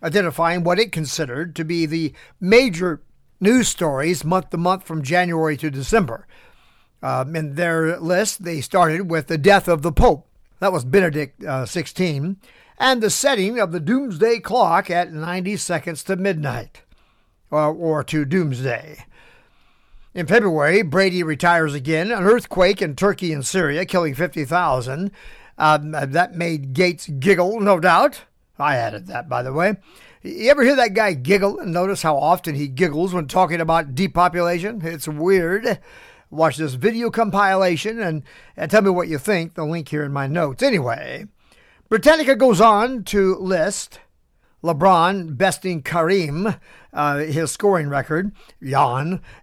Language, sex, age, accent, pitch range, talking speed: English, male, 50-69, American, 155-200 Hz, 145 wpm